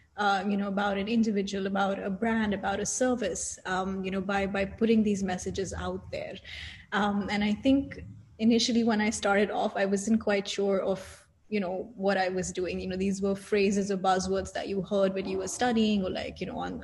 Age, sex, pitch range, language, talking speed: 20-39, female, 190-215 Hz, English, 215 wpm